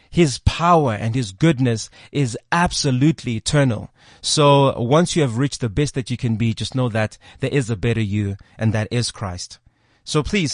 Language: English